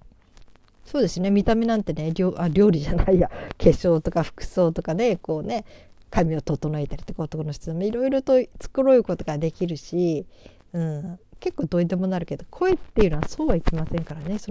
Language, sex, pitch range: Japanese, female, 155-205 Hz